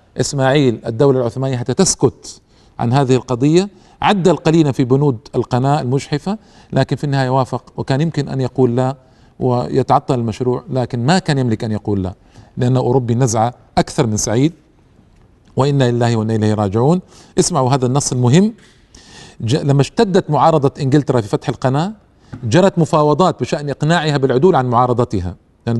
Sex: male